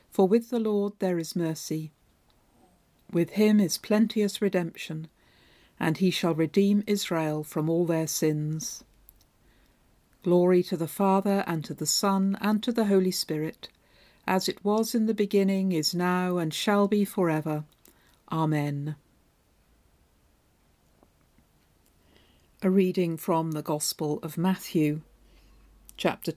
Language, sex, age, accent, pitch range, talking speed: English, female, 50-69, British, 155-195 Hz, 125 wpm